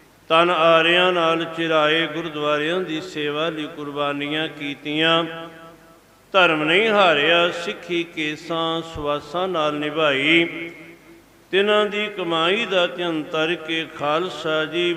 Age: 60-79